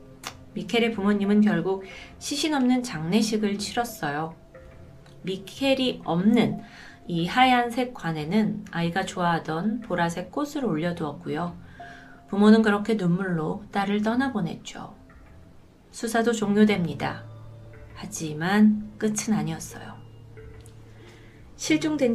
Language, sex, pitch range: Korean, female, 170-245 Hz